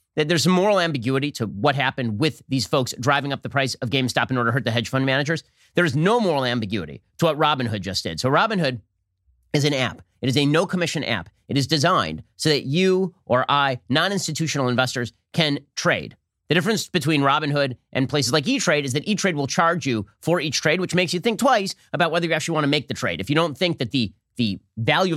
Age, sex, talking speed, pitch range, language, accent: 30-49, male, 230 wpm, 120-160 Hz, English, American